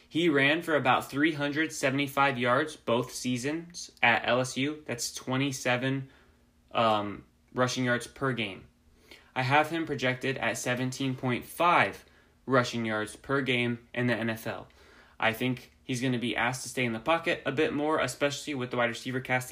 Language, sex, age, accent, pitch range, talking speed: English, male, 20-39, American, 115-140 Hz, 170 wpm